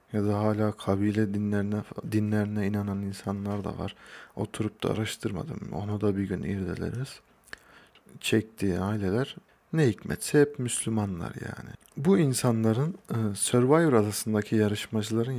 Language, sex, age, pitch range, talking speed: Turkish, male, 40-59, 100-125 Hz, 115 wpm